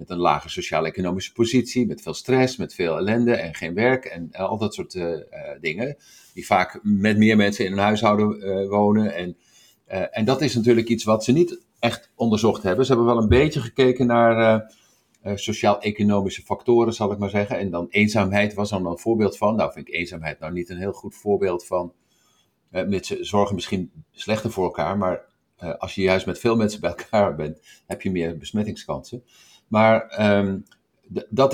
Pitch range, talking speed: 95-115 Hz, 195 wpm